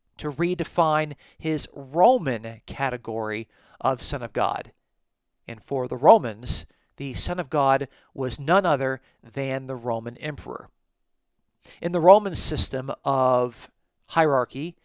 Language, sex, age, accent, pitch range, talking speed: English, male, 50-69, American, 135-170 Hz, 120 wpm